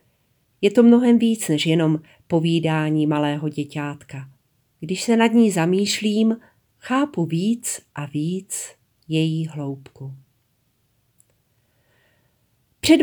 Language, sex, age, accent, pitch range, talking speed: Czech, female, 40-59, native, 145-195 Hz, 95 wpm